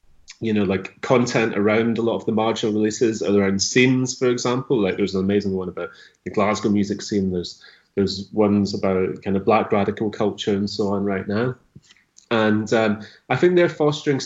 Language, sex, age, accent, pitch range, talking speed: English, male, 30-49, British, 110-140 Hz, 190 wpm